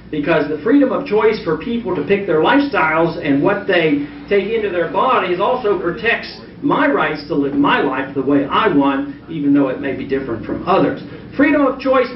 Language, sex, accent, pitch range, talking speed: English, male, American, 155-215 Hz, 200 wpm